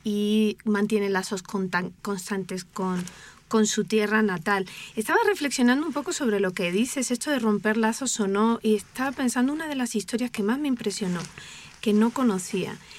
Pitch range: 200-250 Hz